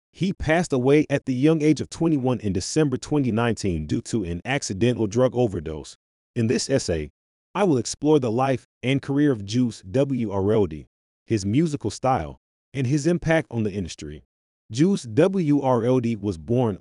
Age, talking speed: 30-49, 155 wpm